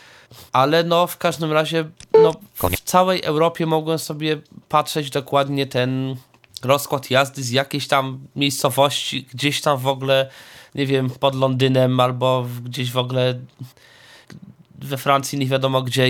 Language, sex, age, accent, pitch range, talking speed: Polish, male, 20-39, native, 125-160 Hz, 140 wpm